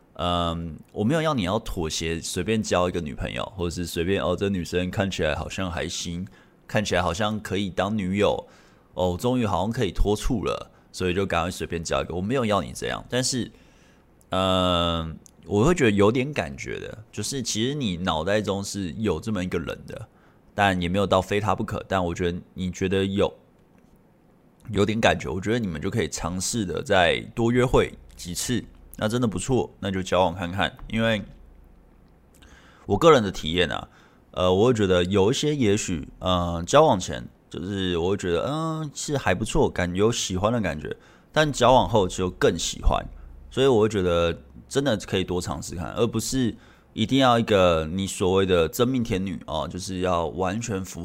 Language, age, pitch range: Chinese, 20-39, 85-110 Hz